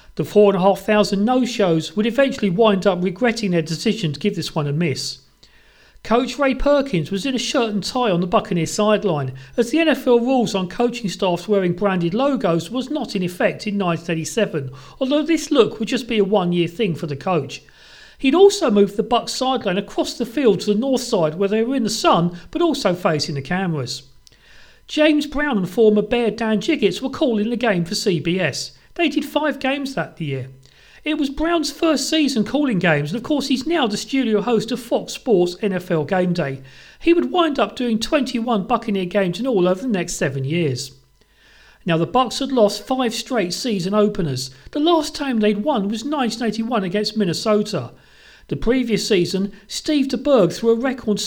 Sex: male